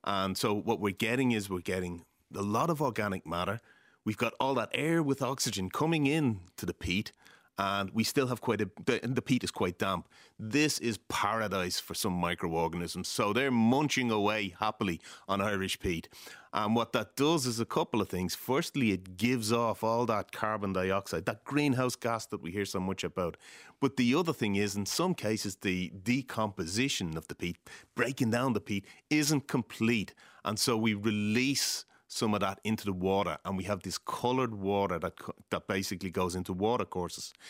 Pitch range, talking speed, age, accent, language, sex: 95-120 Hz, 190 wpm, 30-49, Irish, English, male